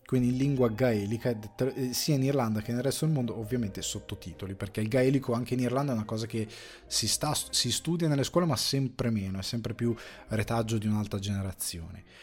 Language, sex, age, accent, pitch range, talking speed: Italian, male, 20-39, native, 105-135 Hz, 195 wpm